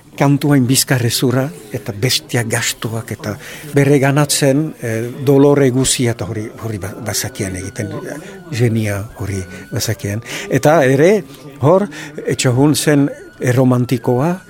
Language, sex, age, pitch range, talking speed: French, male, 60-79, 110-135 Hz, 100 wpm